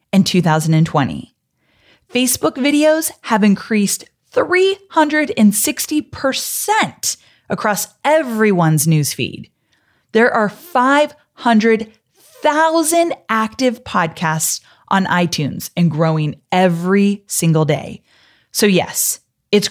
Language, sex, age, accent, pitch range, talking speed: English, female, 20-39, American, 170-240 Hz, 75 wpm